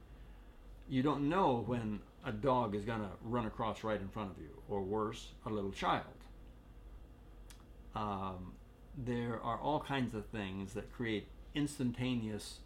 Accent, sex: American, male